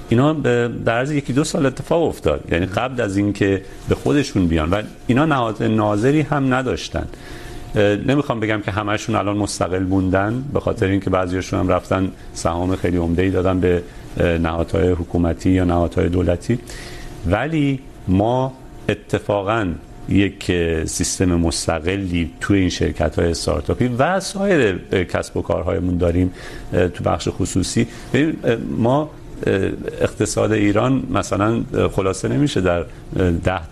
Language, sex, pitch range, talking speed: Urdu, male, 95-130 Hz, 130 wpm